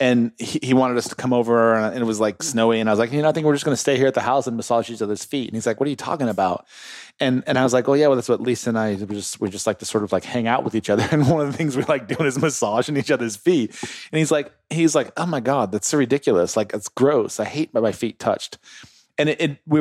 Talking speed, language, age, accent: 320 wpm, English, 30-49, American